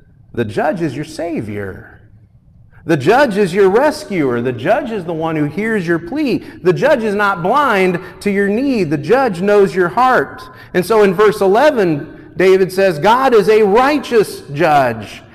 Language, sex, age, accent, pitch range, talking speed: English, male, 40-59, American, 120-195 Hz, 170 wpm